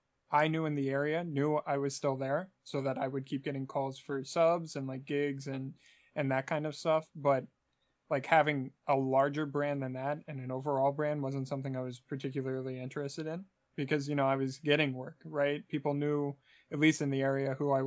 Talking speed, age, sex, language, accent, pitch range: 215 wpm, 20-39, male, English, American, 135-155 Hz